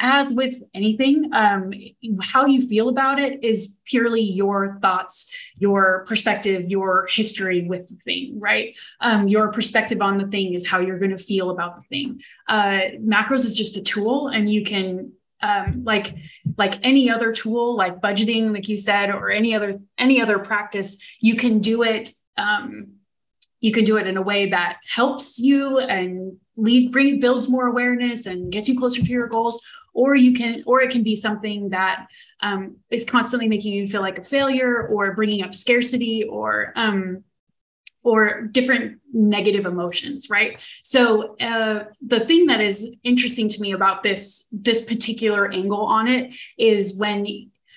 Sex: female